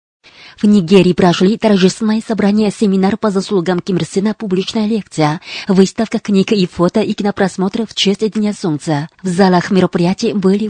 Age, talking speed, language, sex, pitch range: 20-39, 150 wpm, Russian, female, 185-210 Hz